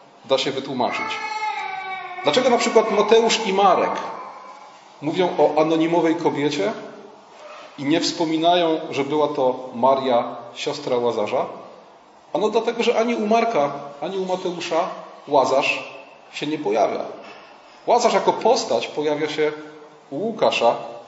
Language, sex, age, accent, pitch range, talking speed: Polish, male, 30-49, native, 140-215 Hz, 120 wpm